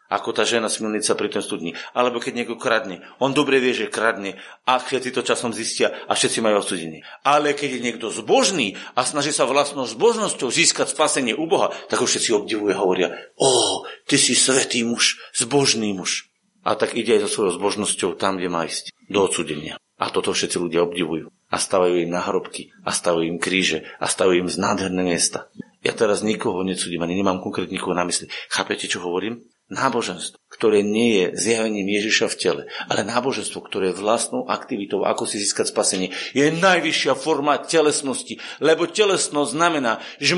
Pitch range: 110-175 Hz